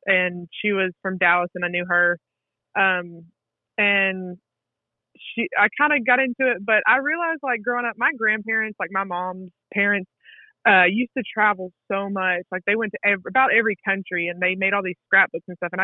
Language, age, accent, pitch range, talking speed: English, 20-39, American, 180-215 Hz, 200 wpm